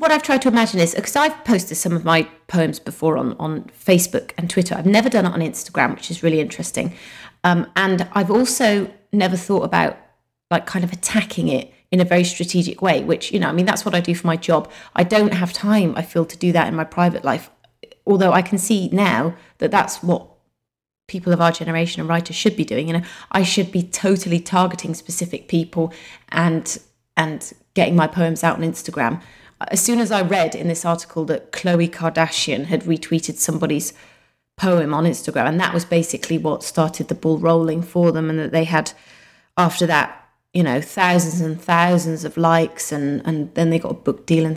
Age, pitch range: 30-49, 165-200 Hz